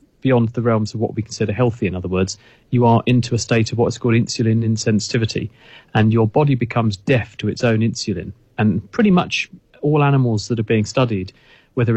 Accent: British